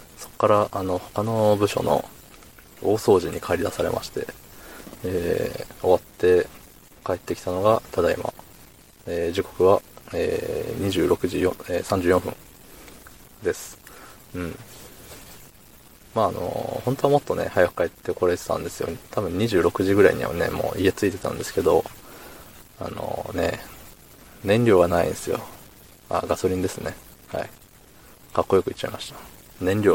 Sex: male